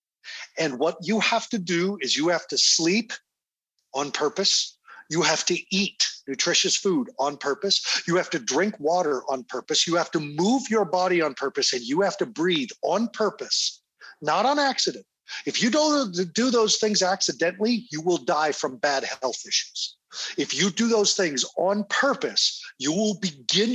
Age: 50-69